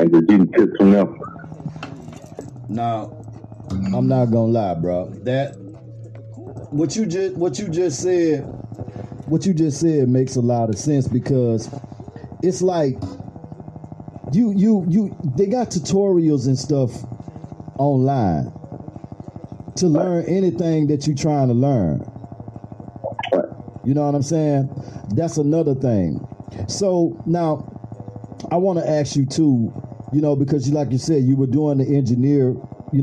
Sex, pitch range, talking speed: male, 120-150 Hz, 135 wpm